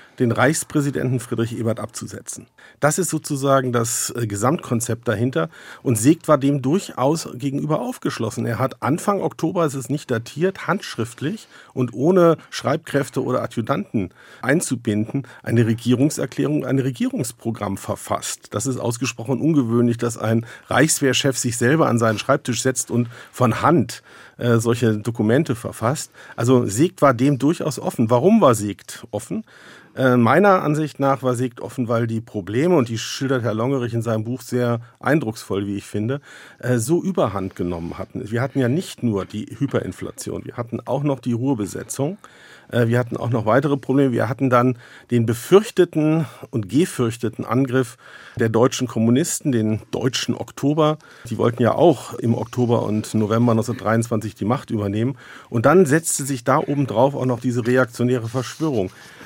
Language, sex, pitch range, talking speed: German, male, 115-140 Hz, 155 wpm